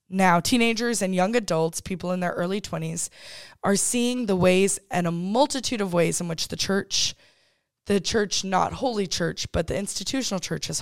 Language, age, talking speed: English, 20-39, 185 wpm